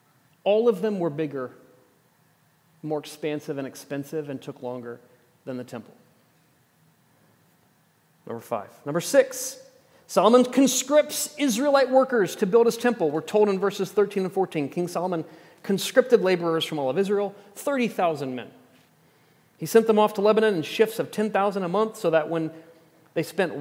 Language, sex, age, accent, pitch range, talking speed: English, male, 40-59, American, 145-200 Hz, 155 wpm